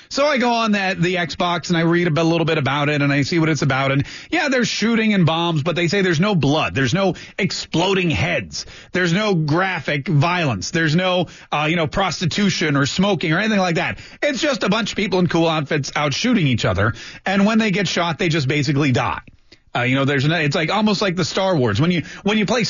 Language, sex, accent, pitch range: English, male, American, 140-205 Hz